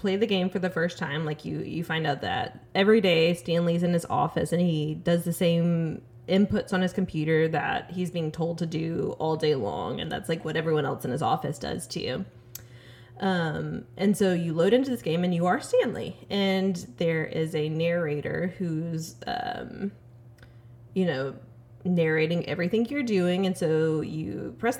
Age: 20-39